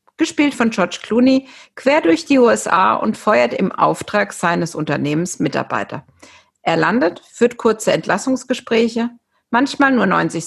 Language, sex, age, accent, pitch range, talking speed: German, female, 50-69, German, 170-235 Hz, 130 wpm